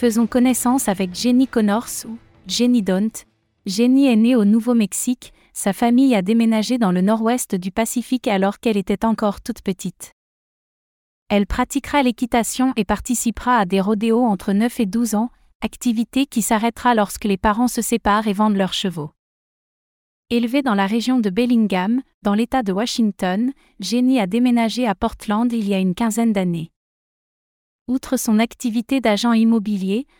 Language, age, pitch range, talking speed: French, 30-49, 205-245 Hz, 155 wpm